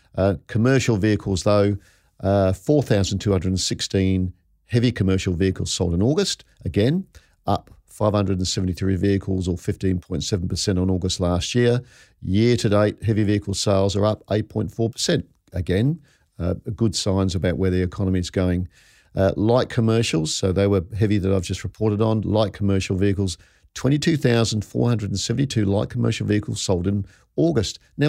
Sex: male